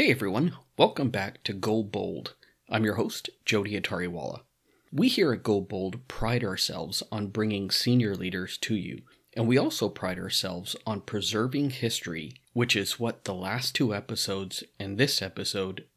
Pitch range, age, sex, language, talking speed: 95-120 Hz, 30-49, male, English, 160 wpm